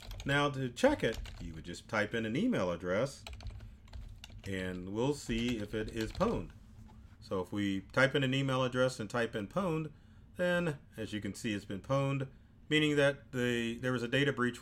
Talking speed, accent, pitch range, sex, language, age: 195 wpm, American, 105-130 Hz, male, English, 40-59